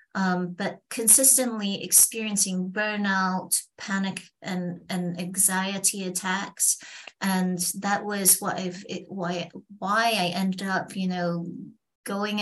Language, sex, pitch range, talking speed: English, female, 180-205 Hz, 110 wpm